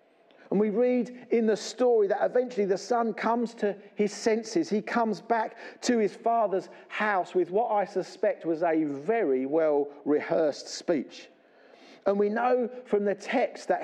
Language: English